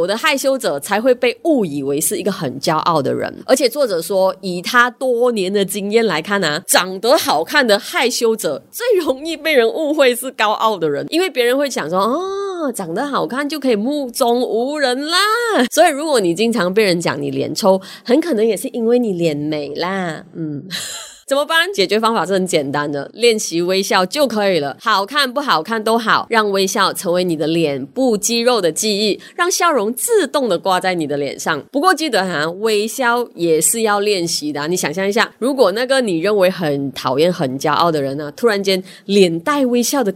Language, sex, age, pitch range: Chinese, female, 20-39, 175-265 Hz